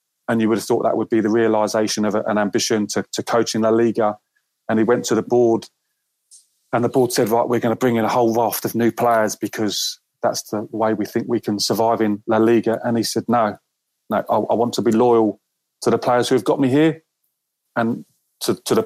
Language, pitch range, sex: English, 110-120 Hz, male